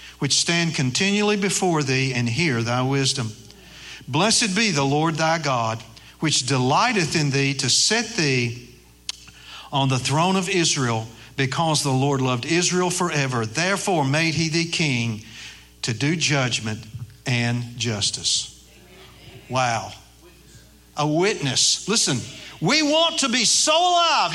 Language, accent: English, American